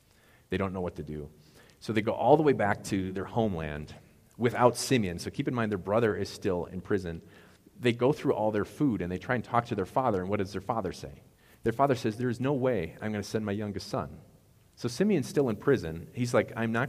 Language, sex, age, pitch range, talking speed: English, male, 40-59, 90-110 Hz, 250 wpm